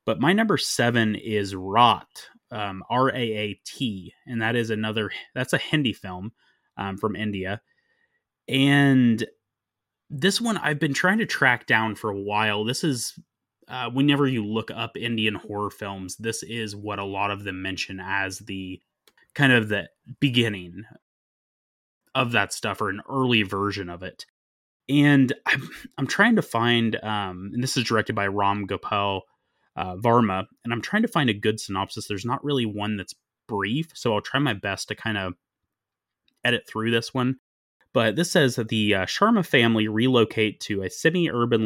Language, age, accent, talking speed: English, 20-39, American, 170 wpm